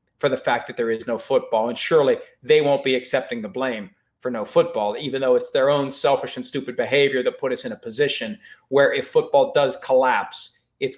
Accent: American